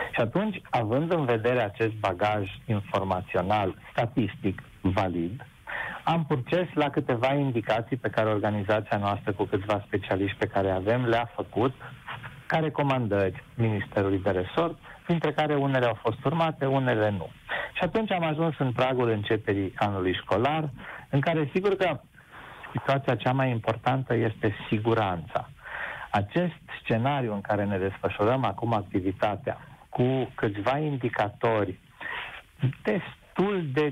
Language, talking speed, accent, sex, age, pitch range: Romanian, 125 wpm, native, male, 40-59, 105-135 Hz